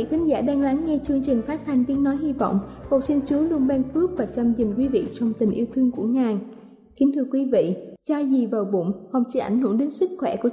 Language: Vietnamese